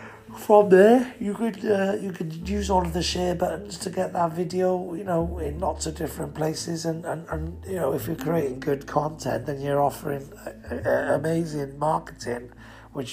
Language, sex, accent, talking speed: English, male, British, 195 wpm